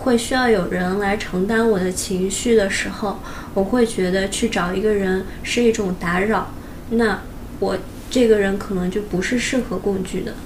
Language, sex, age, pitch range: Chinese, female, 20-39, 195-235 Hz